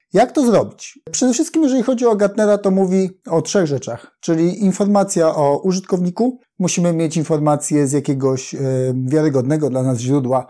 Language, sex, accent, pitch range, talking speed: Polish, male, native, 140-200 Hz, 160 wpm